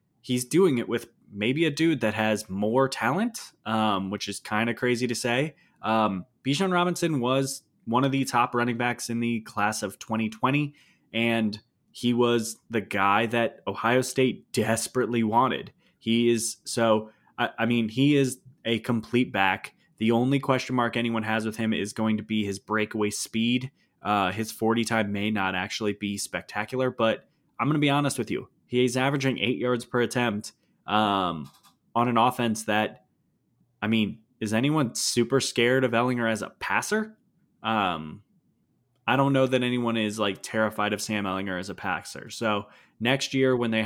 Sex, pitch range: male, 105-125 Hz